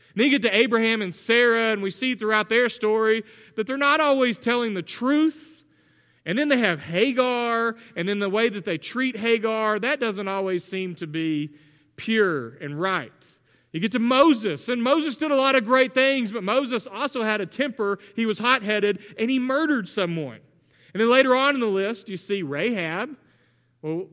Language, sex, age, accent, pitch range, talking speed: English, male, 40-59, American, 185-240 Hz, 195 wpm